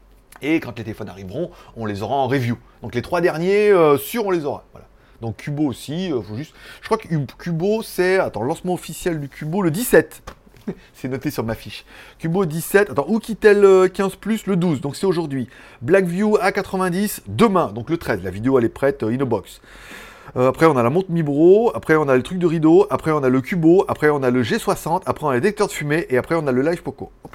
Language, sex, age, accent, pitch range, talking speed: French, male, 30-49, French, 130-190 Hz, 235 wpm